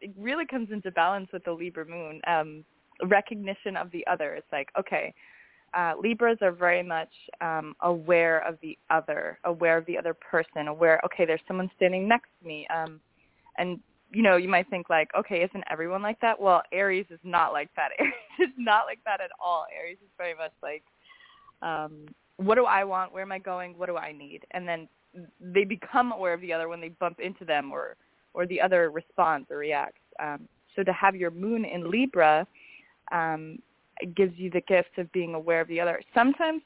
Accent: American